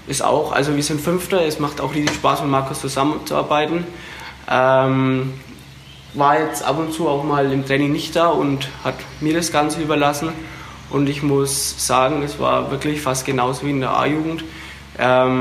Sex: male